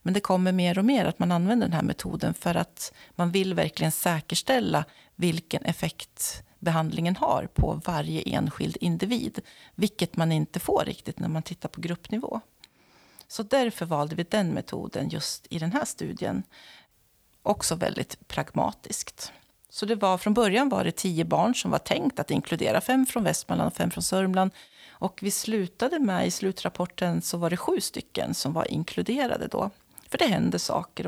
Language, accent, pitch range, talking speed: Swedish, native, 170-210 Hz, 175 wpm